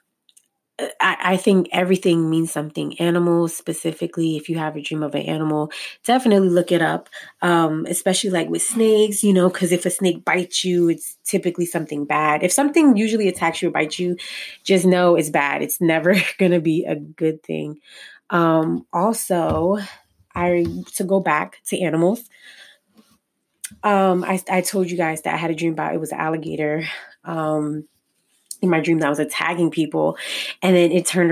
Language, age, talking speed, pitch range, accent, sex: English, 20-39, 180 wpm, 155-185 Hz, American, female